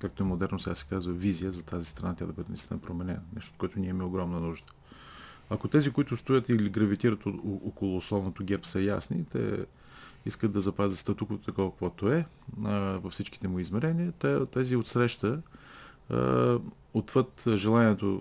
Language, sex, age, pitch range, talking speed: Bulgarian, male, 40-59, 95-120 Hz, 170 wpm